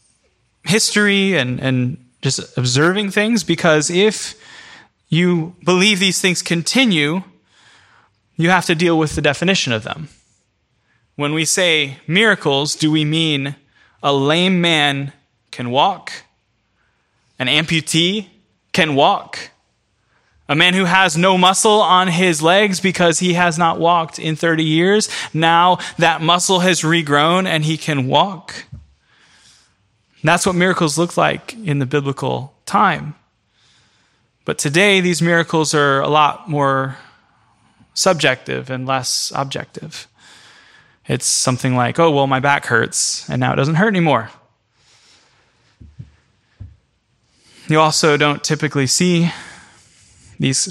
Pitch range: 140-180 Hz